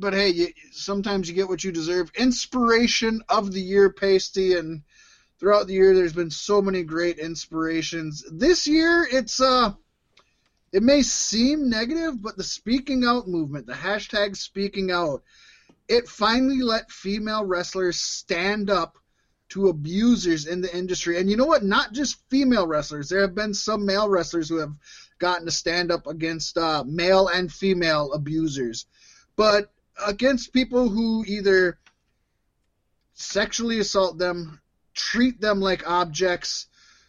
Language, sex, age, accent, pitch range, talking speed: English, male, 20-39, American, 175-230 Hz, 145 wpm